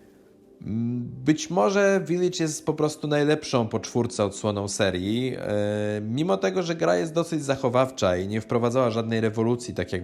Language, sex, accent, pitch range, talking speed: Polish, male, native, 105-125 Hz, 150 wpm